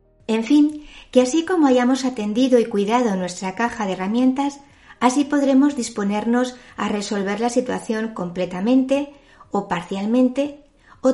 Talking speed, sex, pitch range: 130 wpm, female, 185-260 Hz